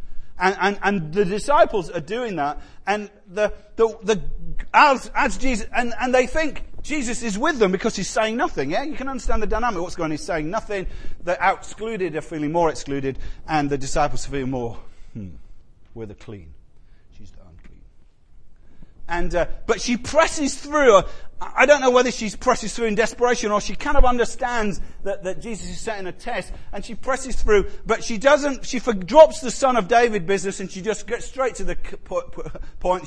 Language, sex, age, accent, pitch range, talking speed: English, male, 40-59, British, 140-230 Hz, 190 wpm